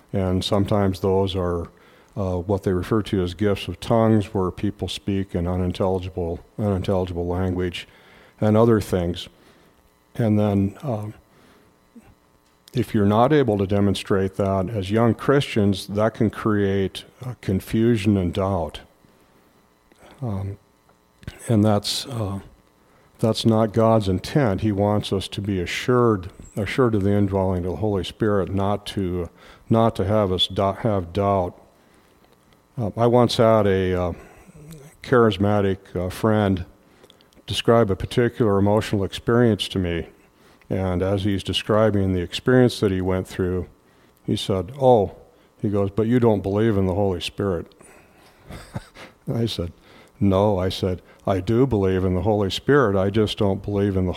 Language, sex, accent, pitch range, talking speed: English, male, American, 95-110 Hz, 145 wpm